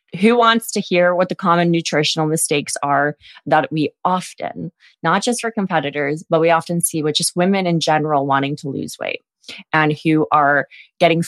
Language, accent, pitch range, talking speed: English, American, 145-170 Hz, 180 wpm